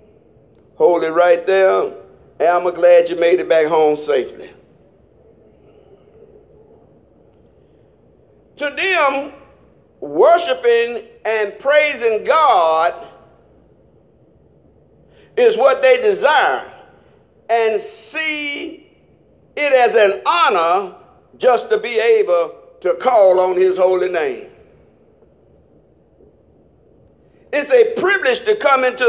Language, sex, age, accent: English, male, 50-69, American